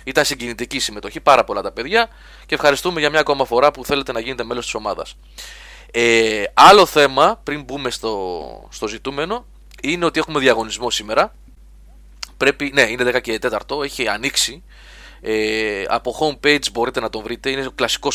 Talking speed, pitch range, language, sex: 160 wpm, 110-145 Hz, Greek, male